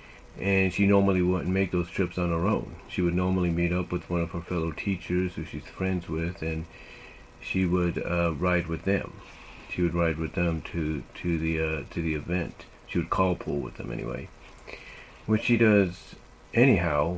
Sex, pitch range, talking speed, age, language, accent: male, 85-95 Hz, 190 wpm, 40-59, English, American